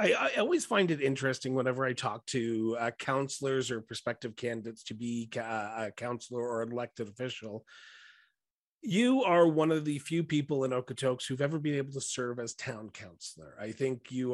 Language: English